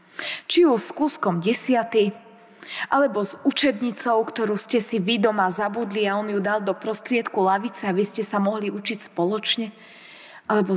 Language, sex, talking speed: Slovak, female, 160 wpm